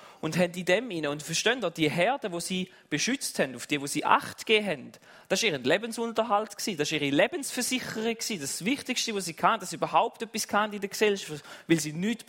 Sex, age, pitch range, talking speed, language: male, 30-49, 180-250 Hz, 205 wpm, German